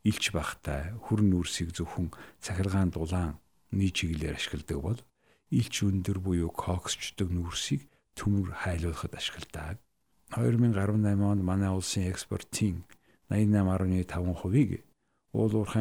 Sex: male